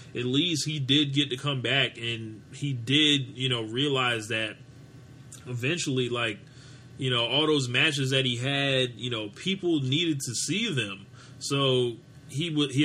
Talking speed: 170 wpm